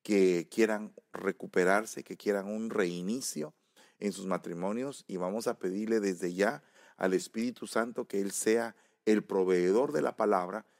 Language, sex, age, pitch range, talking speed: English, male, 40-59, 95-120 Hz, 150 wpm